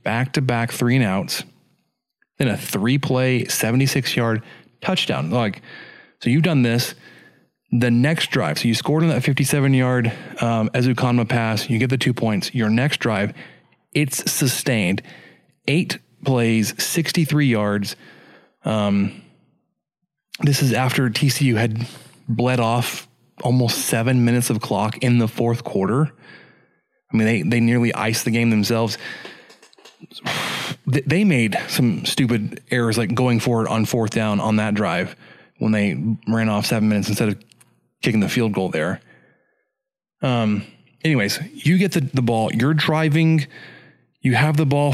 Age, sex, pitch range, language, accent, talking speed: 20-39, male, 115-145 Hz, English, American, 145 wpm